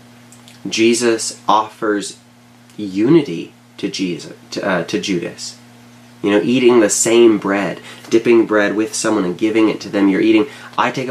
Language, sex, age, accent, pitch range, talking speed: English, male, 30-49, American, 100-120 Hz, 150 wpm